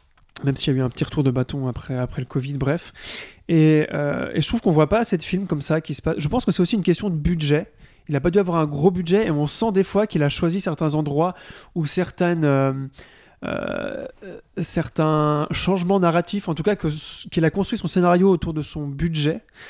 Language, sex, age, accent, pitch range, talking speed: French, male, 20-39, French, 145-185 Hz, 235 wpm